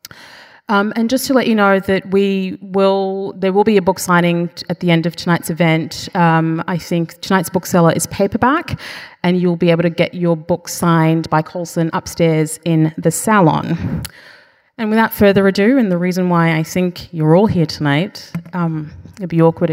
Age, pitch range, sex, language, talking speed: 30-49, 165-195 Hz, female, English, 190 wpm